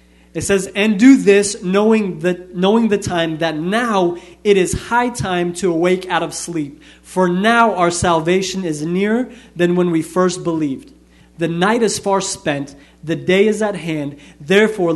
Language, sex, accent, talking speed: German, male, American, 170 wpm